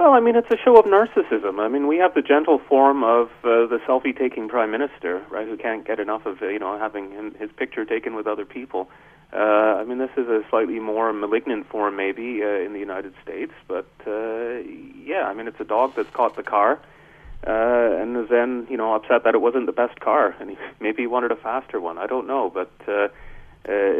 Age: 30-49